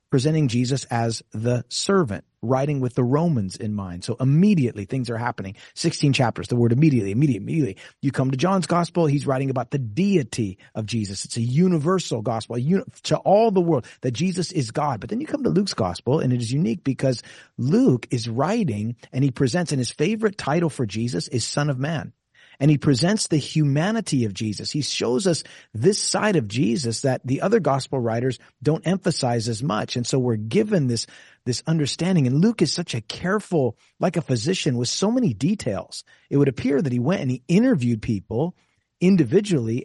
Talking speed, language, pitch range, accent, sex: 195 wpm, English, 120-165 Hz, American, male